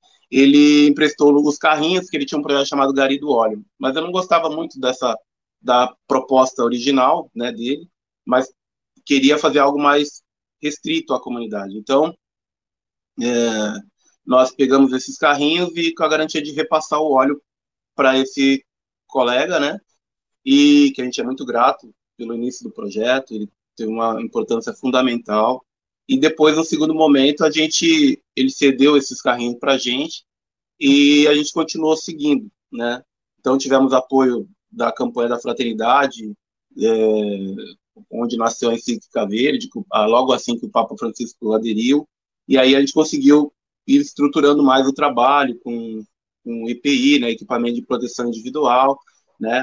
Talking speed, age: 150 wpm, 20-39